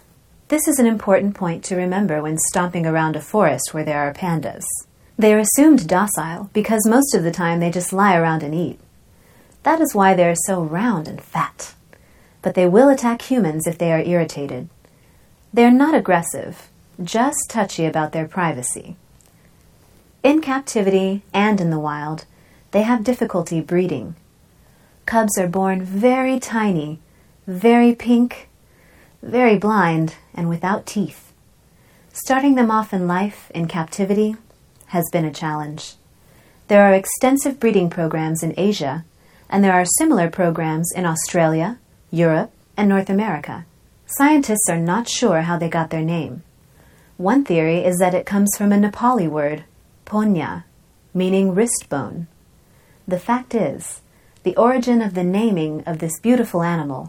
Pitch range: 165-220 Hz